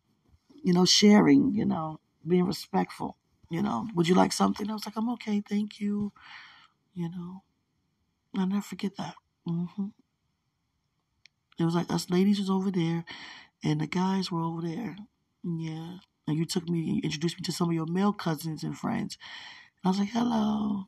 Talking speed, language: 180 wpm, English